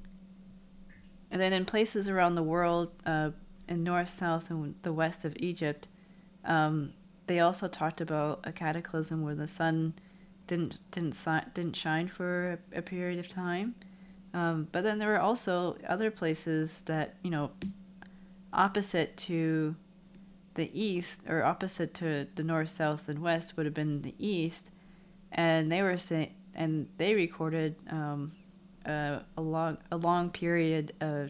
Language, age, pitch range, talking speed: English, 30-49, 160-190 Hz, 155 wpm